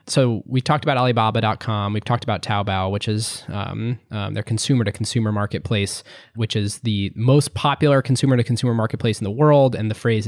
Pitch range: 105-130 Hz